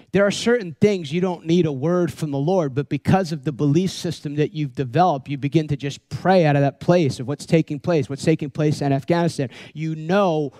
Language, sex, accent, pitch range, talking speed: English, male, American, 145-175 Hz, 230 wpm